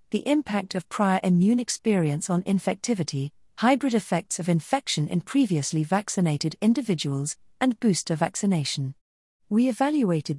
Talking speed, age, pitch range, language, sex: 120 wpm, 40-59, 155-210 Hz, English, female